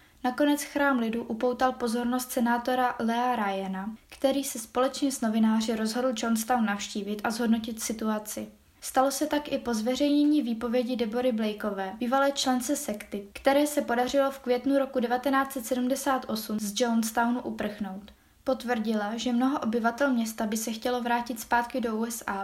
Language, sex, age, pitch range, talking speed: Czech, female, 20-39, 225-260 Hz, 140 wpm